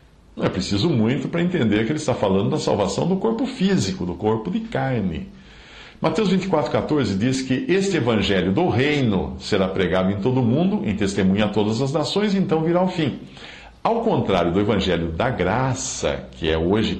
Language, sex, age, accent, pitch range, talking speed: Portuguese, male, 50-69, Brazilian, 95-135 Hz, 185 wpm